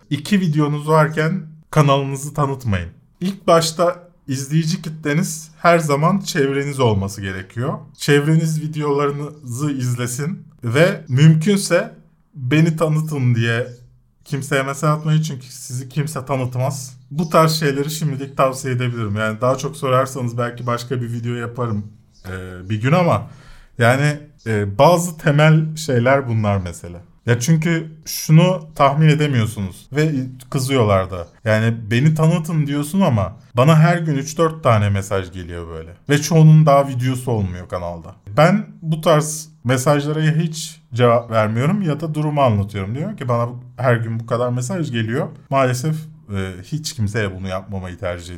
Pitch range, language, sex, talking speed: 120-155 Hz, Turkish, male, 130 wpm